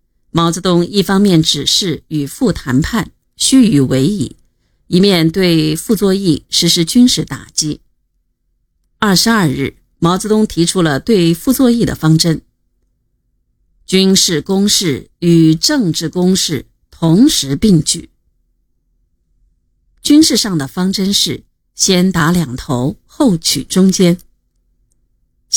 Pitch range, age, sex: 155-200 Hz, 50-69, female